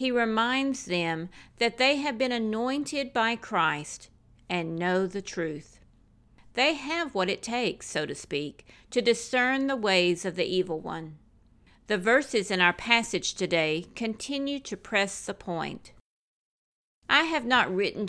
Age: 50-69